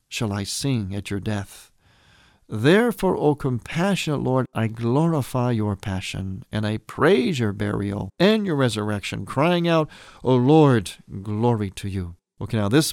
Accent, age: American, 50-69